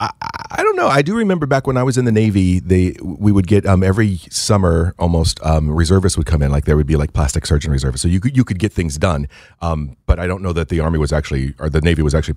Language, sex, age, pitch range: English, male, 40-59, 80-100 Hz